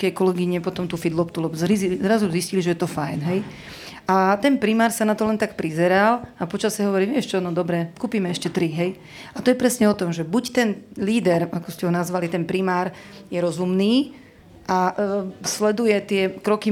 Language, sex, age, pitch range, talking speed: Slovak, female, 40-59, 180-210 Hz, 205 wpm